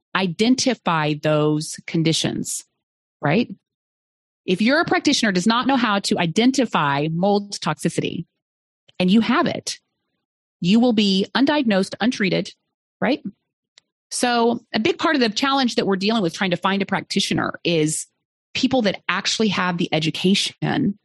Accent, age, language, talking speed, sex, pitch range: American, 30-49, English, 140 wpm, female, 165-240 Hz